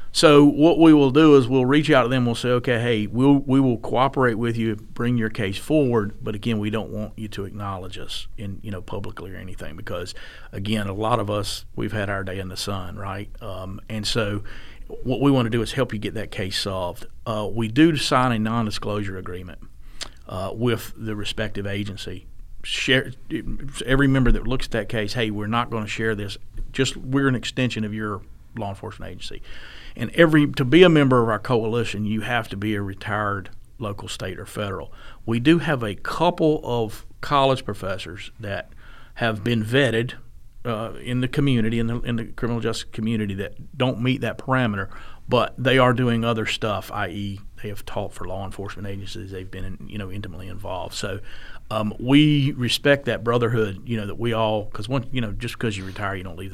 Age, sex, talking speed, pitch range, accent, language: 40-59, male, 205 wpm, 100-125 Hz, American, English